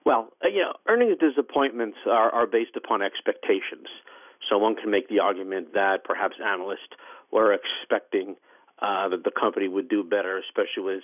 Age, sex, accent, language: 50-69, male, American, English